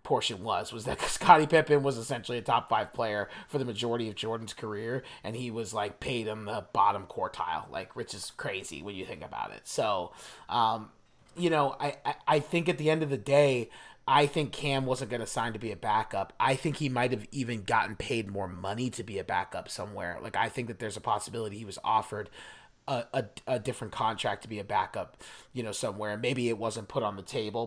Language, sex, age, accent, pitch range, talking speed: English, male, 30-49, American, 110-140 Hz, 225 wpm